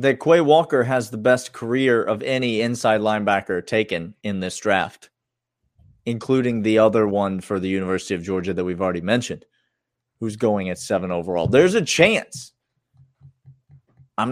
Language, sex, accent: English, male, American